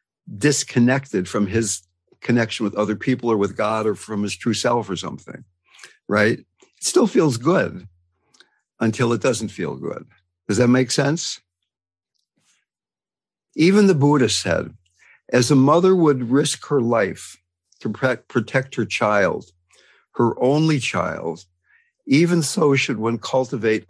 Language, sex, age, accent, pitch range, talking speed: English, male, 60-79, American, 105-135 Hz, 135 wpm